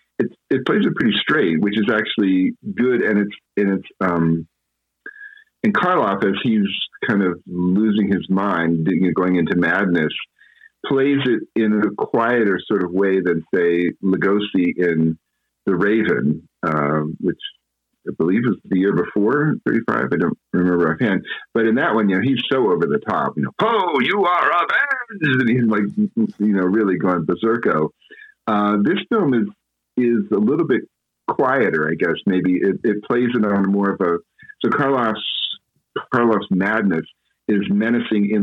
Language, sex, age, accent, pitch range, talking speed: English, male, 50-69, American, 85-110 Hz, 170 wpm